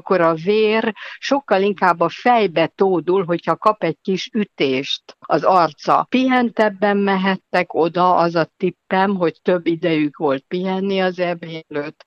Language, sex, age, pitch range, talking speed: Hungarian, female, 60-79, 155-200 Hz, 140 wpm